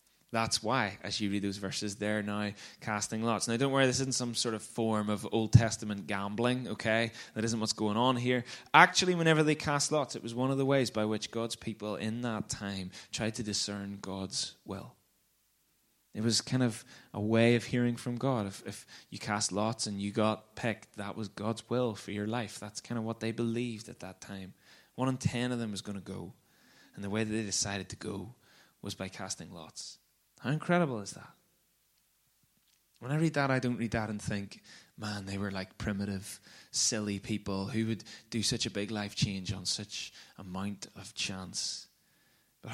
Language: English